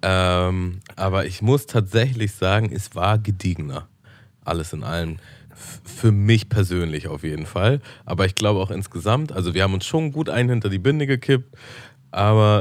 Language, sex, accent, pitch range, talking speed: German, male, German, 90-115 Hz, 170 wpm